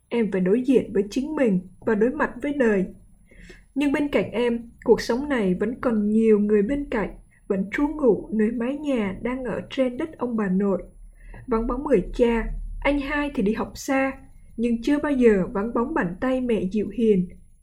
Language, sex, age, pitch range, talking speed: Vietnamese, female, 20-39, 215-260 Hz, 200 wpm